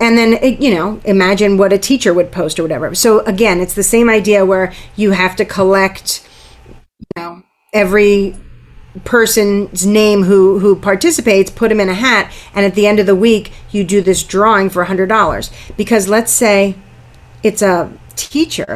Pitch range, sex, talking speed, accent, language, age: 180-220 Hz, female, 180 wpm, American, English, 40-59